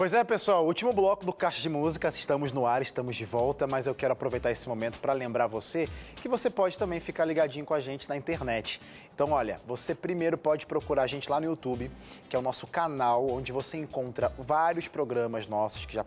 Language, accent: Portuguese, Brazilian